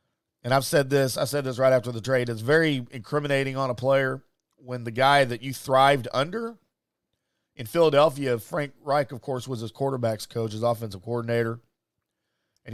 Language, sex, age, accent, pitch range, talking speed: English, male, 40-59, American, 115-140 Hz, 180 wpm